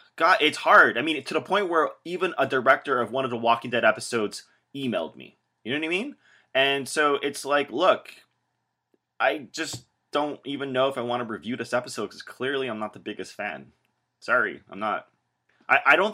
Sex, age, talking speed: male, 20-39, 205 wpm